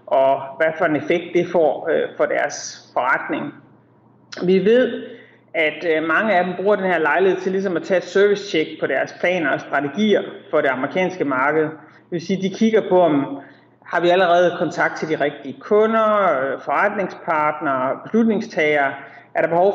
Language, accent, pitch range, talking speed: Danish, native, 155-195 Hz, 170 wpm